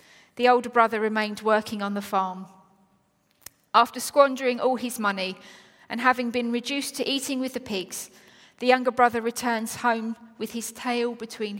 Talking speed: 160 wpm